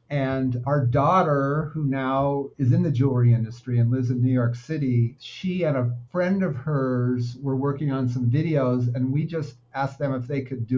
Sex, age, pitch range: male, 50-69, 120-140 Hz